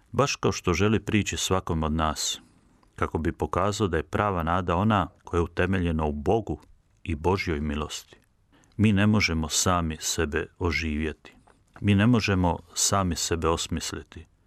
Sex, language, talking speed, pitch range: male, Croatian, 150 wpm, 85-105 Hz